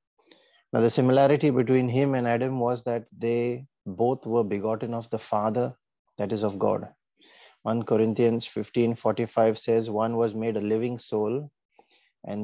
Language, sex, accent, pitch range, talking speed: English, male, Indian, 110-125 Hz, 150 wpm